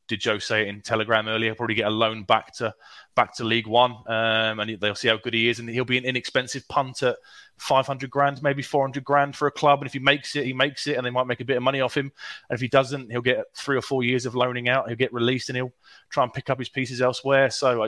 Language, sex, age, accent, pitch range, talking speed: English, male, 20-39, British, 110-125 Hz, 275 wpm